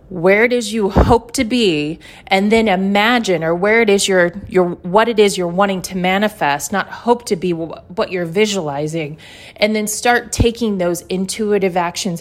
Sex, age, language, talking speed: female, 30-49, English, 155 wpm